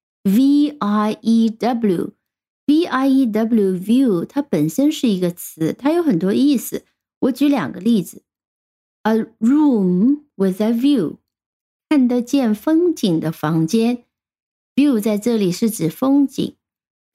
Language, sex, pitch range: Chinese, female, 210-275 Hz